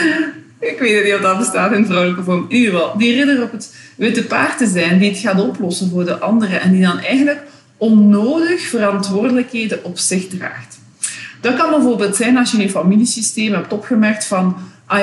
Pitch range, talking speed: 180-230 Hz, 190 wpm